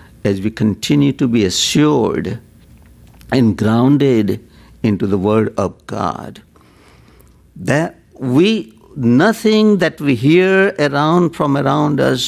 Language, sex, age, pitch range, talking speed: English, male, 60-79, 110-170 Hz, 110 wpm